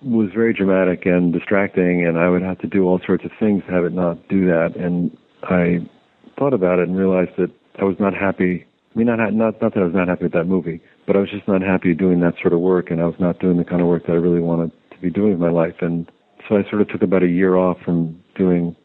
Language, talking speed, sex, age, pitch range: English, 275 wpm, male, 50-69, 85-95 Hz